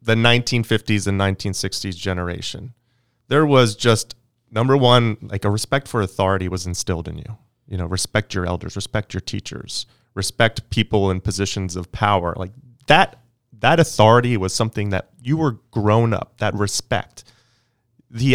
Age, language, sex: 30-49, English, male